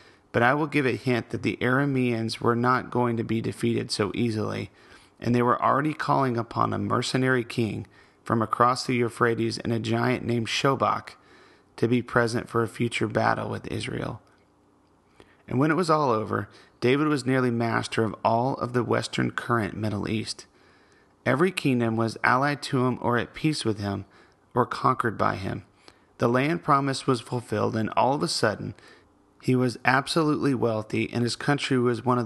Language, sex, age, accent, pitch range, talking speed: English, male, 30-49, American, 110-130 Hz, 180 wpm